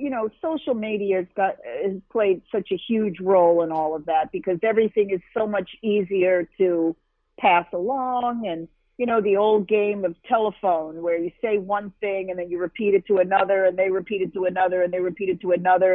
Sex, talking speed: female, 215 wpm